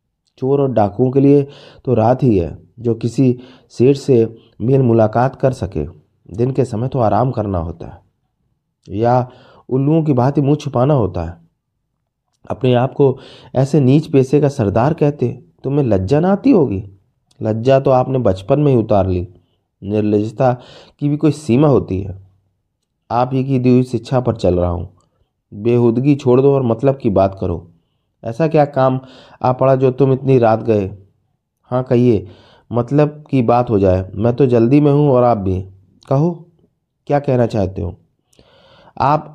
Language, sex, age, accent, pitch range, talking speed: Hindi, male, 30-49, native, 105-135 Hz, 170 wpm